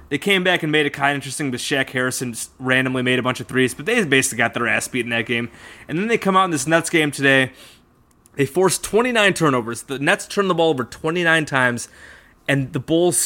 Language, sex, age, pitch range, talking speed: English, male, 20-39, 130-160 Hz, 255 wpm